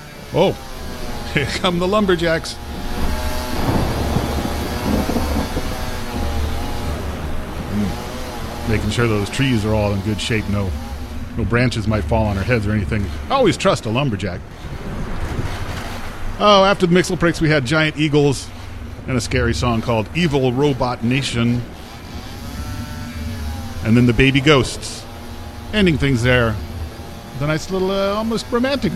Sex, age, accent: male, 40-59, American